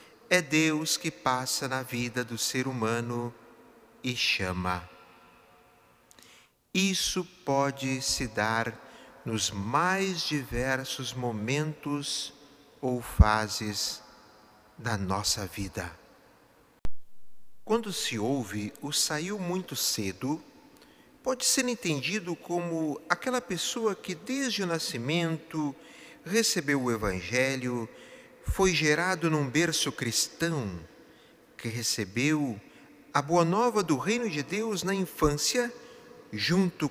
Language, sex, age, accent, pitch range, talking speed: Portuguese, male, 50-69, Brazilian, 120-185 Hz, 100 wpm